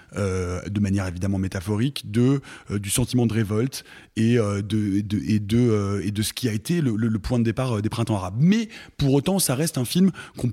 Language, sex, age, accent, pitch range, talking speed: French, male, 20-39, French, 110-140 Hz, 240 wpm